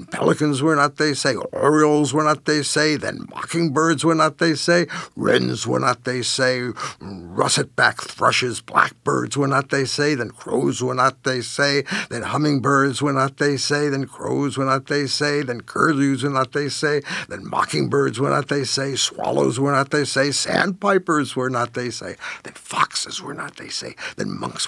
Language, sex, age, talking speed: English, male, 60-79, 185 wpm